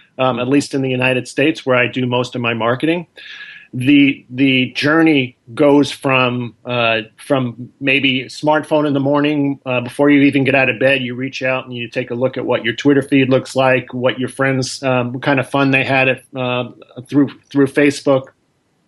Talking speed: 205 wpm